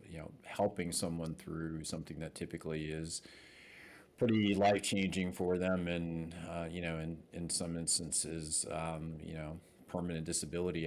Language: English